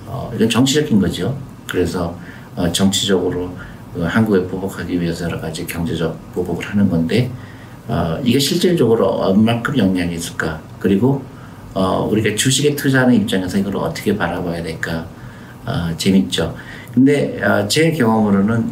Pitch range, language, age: 90-120 Hz, Korean, 50-69